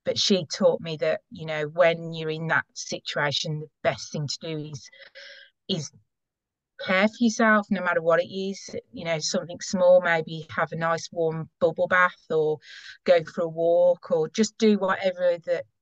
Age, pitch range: 30-49, 160-200 Hz